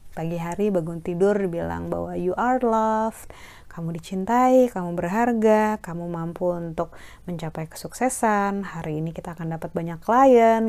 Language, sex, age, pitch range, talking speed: Indonesian, female, 20-39, 170-225 Hz, 140 wpm